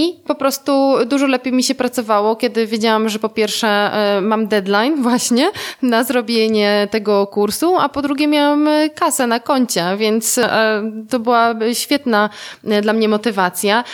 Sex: female